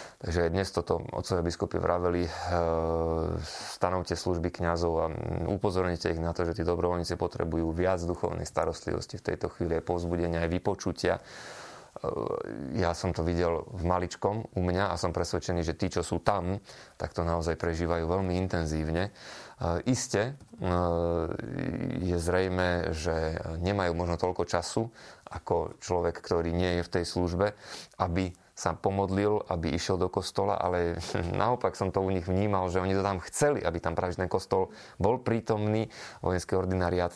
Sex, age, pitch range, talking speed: male, 30-49, 85-95 Hz, 160 wpm